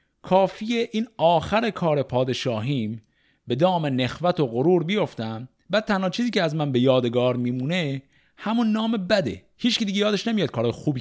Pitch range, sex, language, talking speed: 105-160 Hz, male, Persian, 160 wpm